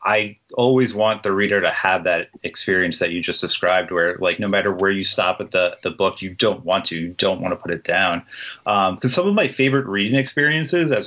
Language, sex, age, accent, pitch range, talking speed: English, male, 30-49, American, 90-120 Hz, 240 wpm